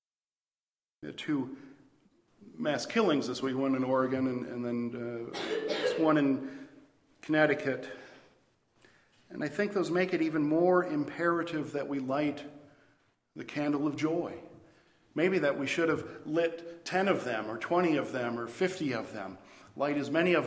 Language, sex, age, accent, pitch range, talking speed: English, male, 50-69, American, 130-160 Hz, 150 wpm